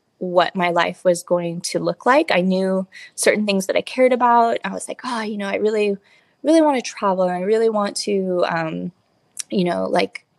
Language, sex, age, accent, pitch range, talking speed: English, female, 20-39, American, 170-215 Hz, 215 wpm